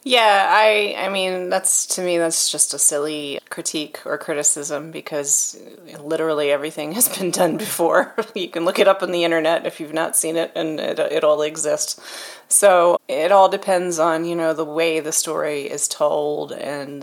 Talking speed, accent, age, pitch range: 185 wpm, American, 30-49, 150-175 Hz